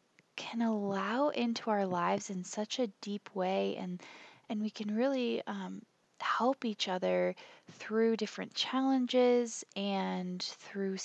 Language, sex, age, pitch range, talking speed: English, female, 20-39, 185-230 Hz, 130 wpm